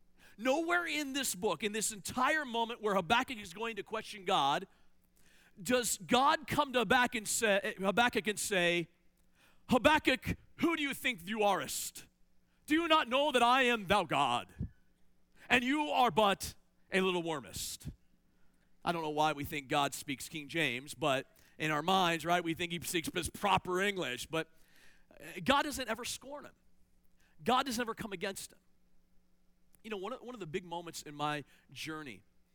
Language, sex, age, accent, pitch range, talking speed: English, male, 40-59, American, 130-210 Hz, 170 wpm